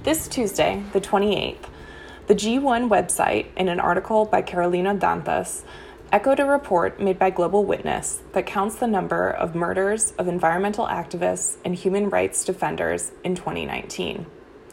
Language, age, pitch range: Portuguese, 20-39, 190-280 Hz